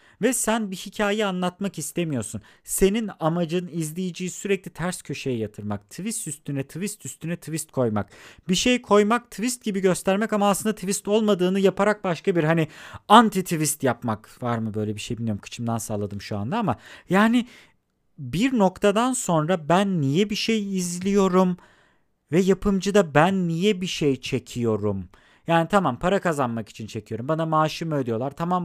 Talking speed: 155 wpm